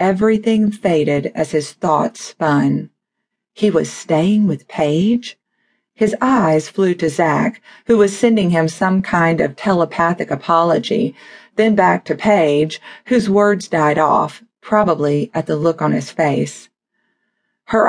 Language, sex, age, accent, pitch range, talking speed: English, female, 40-59, American, 160-220 Hz, 140 wpm